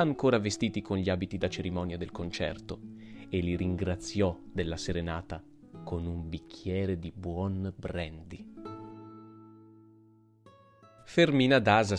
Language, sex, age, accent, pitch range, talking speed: Italian, male, 30-49, native, 85-110 Hz, 110 wpm